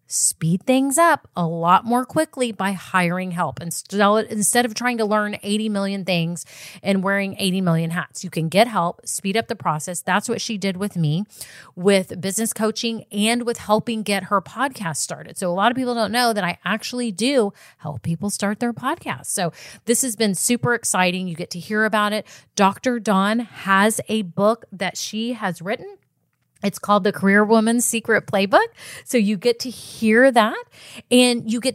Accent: American